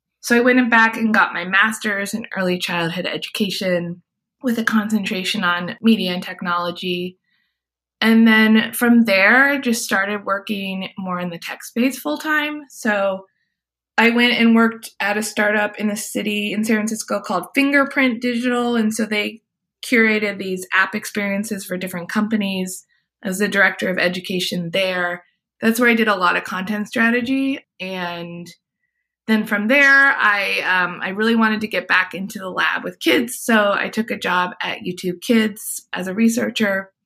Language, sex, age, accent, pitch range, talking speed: English, female, 20-39, American, 180-225 Hz, 170 wpm